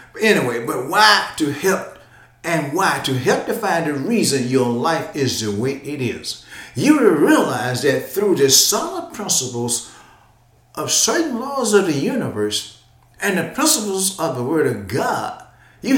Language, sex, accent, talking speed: English, male, American, 160 wpm